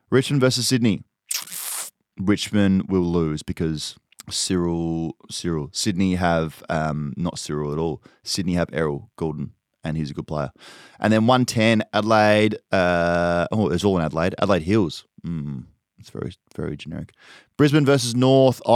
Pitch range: 80-115 Hz